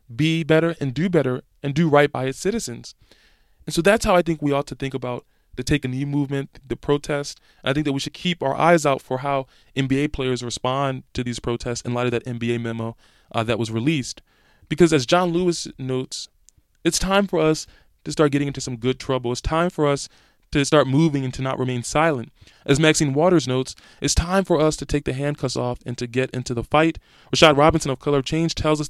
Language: English